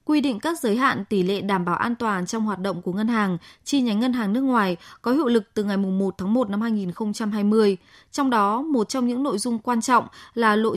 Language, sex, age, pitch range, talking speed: Vietnamese, female, 20-39, 205-255 Hz, 245 wpm